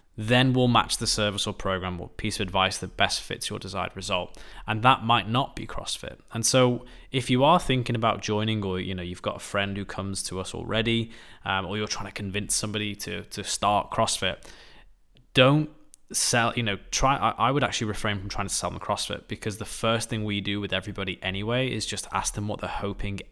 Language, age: English, 20-39